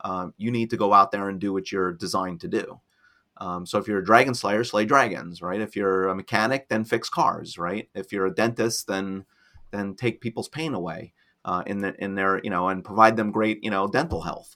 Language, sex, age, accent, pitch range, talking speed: English, male, 30-49, American, 100-120 Hz, 235 wpm